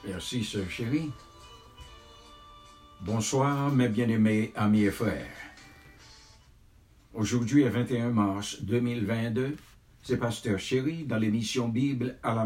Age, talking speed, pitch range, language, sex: 60-79, 105 wpm, 105-125 Hz, English, male